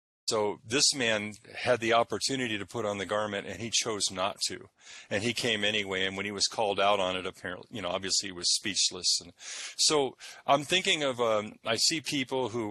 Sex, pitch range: male, 100-115 Hz